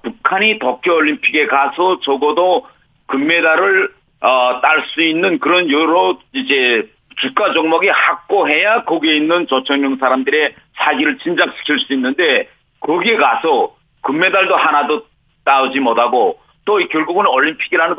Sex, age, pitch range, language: male, 40-59, 135-230 Hz, Korean